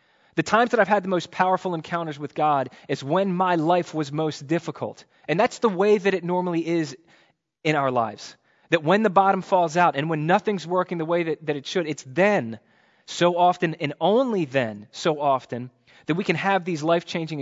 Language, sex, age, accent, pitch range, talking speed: English, male, 20-39, American, 150-190 Hz, 205 wpm